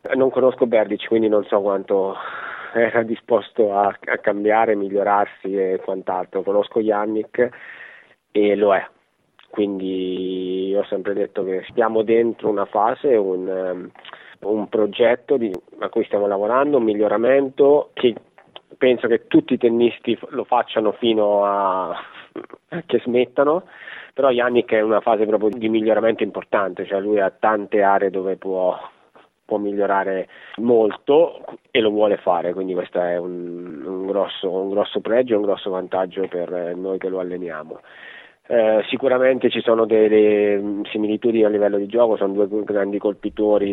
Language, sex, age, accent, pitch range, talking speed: Italian, male, 20-39, native, 95-110 Hz, 145 wpm